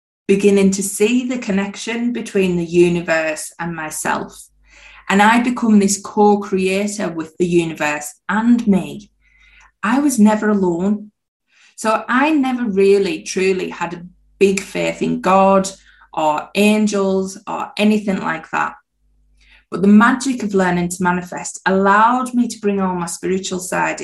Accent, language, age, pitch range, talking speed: British, English, 20-39, 190-230 Hz, 140 wpm